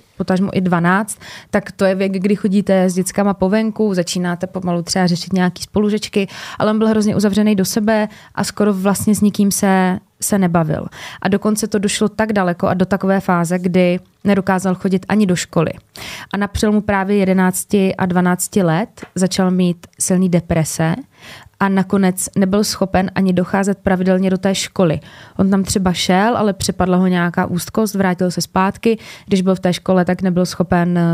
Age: 20-39